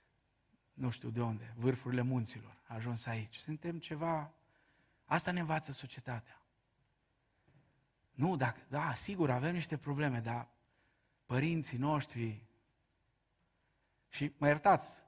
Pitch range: 120-145 Hz